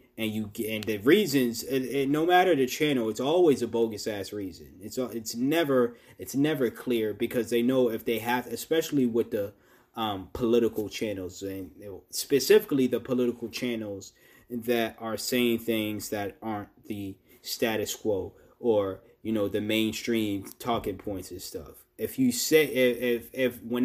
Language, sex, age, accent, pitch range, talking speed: English, male, 20-39, American, 105-125 Hz, 165 wpm